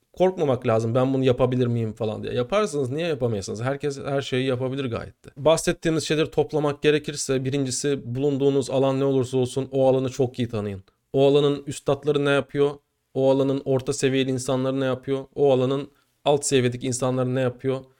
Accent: native